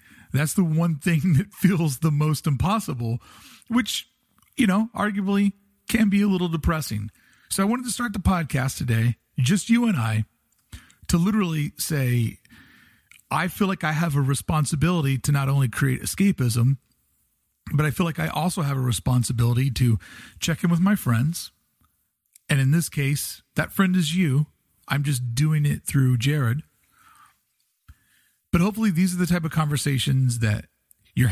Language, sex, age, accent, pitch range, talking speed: English, male, 40-59, American, 125-170 Hz, 160 wpm